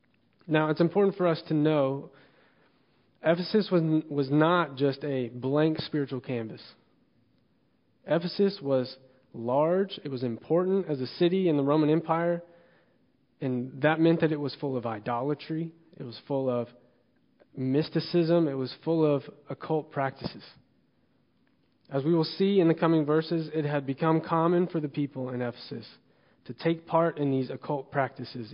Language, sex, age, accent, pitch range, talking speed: English, male, 30-49, American, 130-165 Hz, 155 wpm